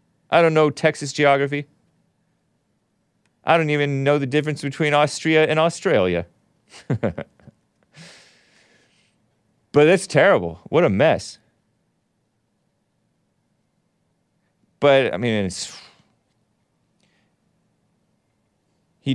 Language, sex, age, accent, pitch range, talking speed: English, male, 30-49, American, 105-150 Hz, 80 wpm